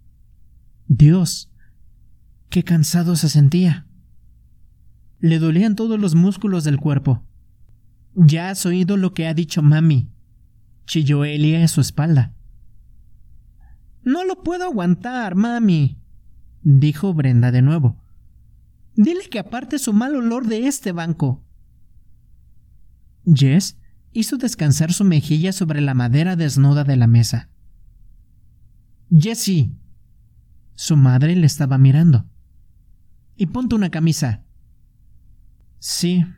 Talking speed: 110 wpm